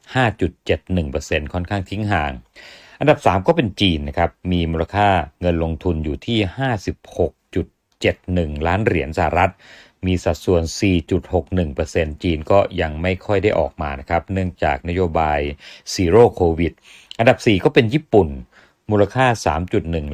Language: Thai